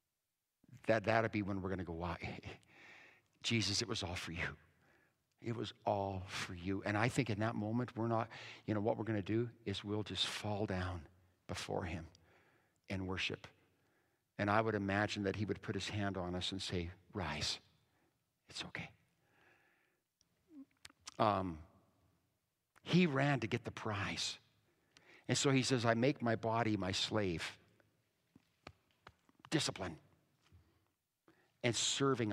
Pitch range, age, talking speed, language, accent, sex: 95-120 Hz, 50-69, 145 wpm, English, American, male